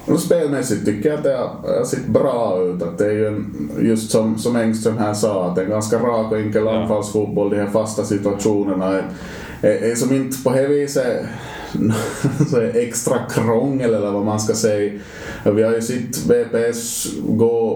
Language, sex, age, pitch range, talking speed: Swedish, male, 20-39, 100-115 Hz, 165 wpm